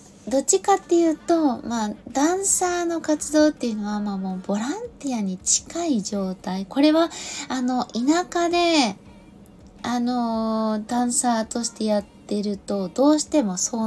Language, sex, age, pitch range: Japanese, female, 20-39, 205-275 Hz